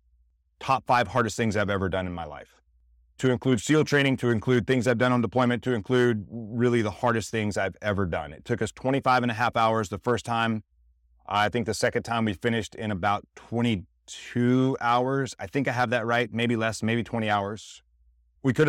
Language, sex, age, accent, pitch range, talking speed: English, male, 30-49, American, 105-120 Hz, 210 wpm